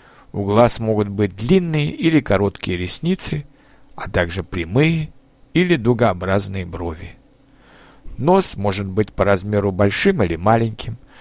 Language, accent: Russian, native